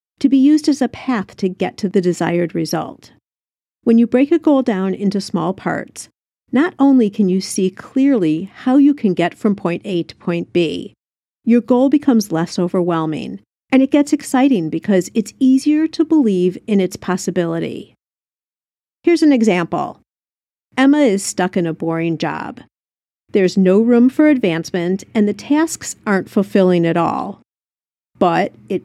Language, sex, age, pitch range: English, female, 50-69, 185-270 Hz